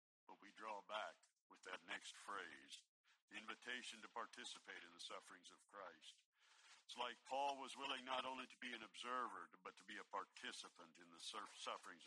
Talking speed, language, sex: 180 wpm, English, male